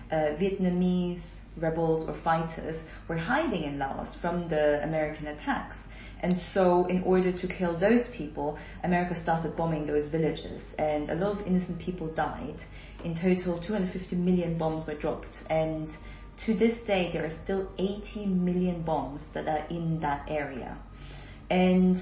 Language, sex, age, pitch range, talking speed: English, female, 30-49, 155-190 Hz, 155 wpm